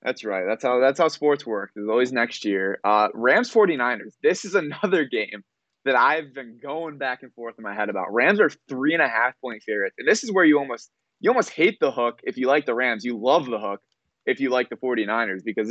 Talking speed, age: 230 wpm, 20-39